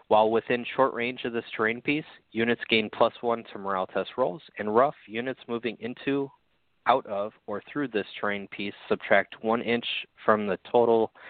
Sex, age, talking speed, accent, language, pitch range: male, 20-39, 180 wpm, American, English, 95-115 Hz